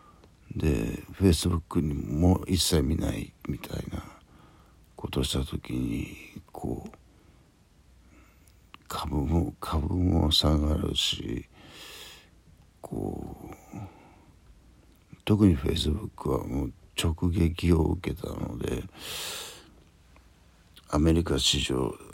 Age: 60-79